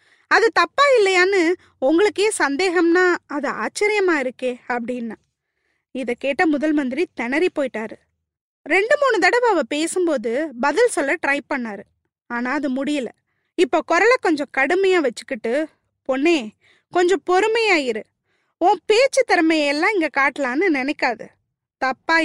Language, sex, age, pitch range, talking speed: Tamil, female, 20-39, 275-365 Hz, 110 wpm